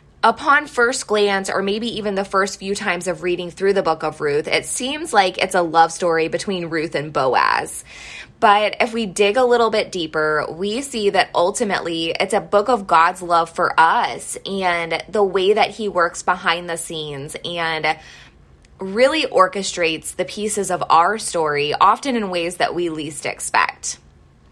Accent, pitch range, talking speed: American, 165-215 Hz, 175 wpm